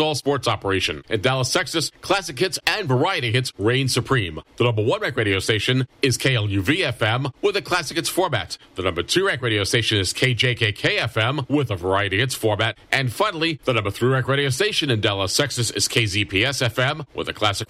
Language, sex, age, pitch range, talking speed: English, male, 40-59, 105-140 Hz, 195 wpm